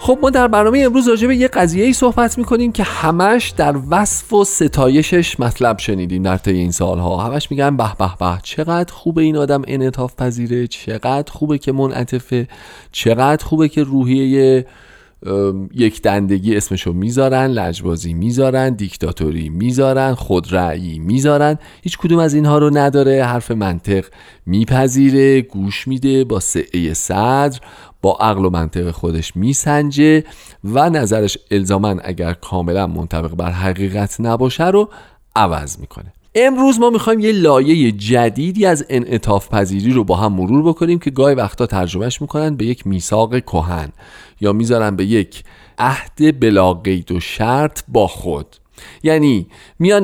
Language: Persian